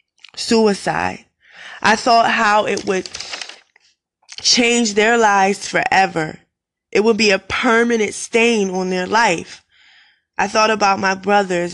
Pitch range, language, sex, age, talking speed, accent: 185-225 Hz, English, female, 20-39, 125 wpm, American